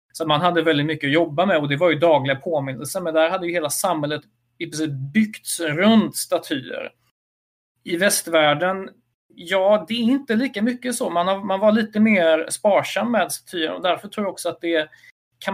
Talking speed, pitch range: 190 wpm, 145-185 Hz